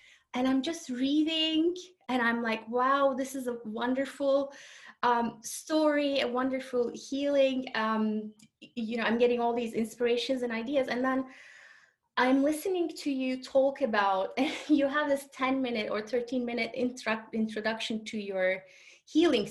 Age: 20-39